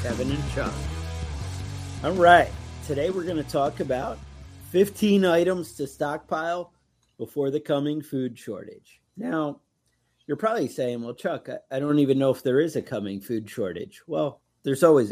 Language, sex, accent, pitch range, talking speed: English, male, American, 115-150 Hz, 165 wpm